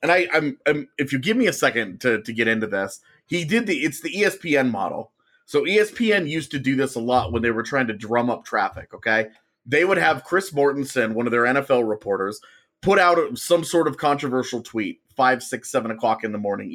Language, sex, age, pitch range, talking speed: English, male, 30-49, 125-175 Hz, 225 wpm